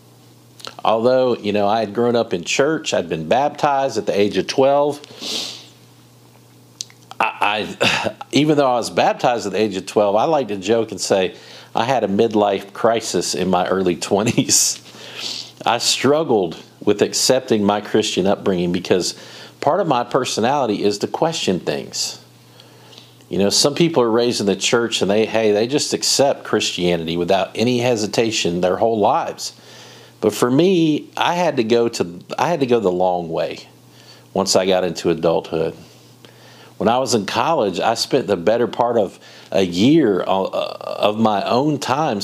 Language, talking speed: English, 170 wpm